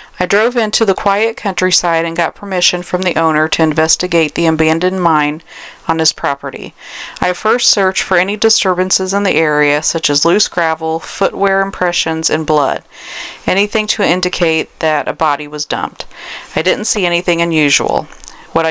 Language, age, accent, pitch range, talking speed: English, 40-59, American, 160-195 Hz, 165 wpm